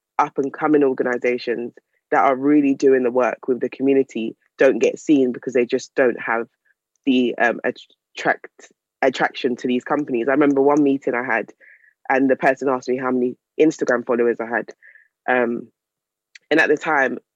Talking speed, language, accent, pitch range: 165 wpm, English, British, 130-150 Hz